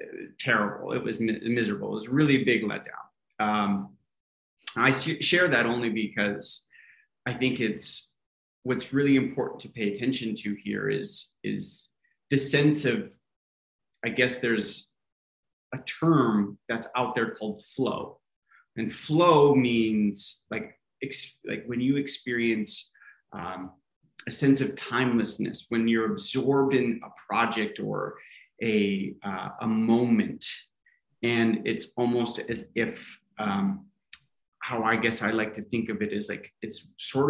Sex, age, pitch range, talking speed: male, 30-49, 105-130 Hz, 140 wpm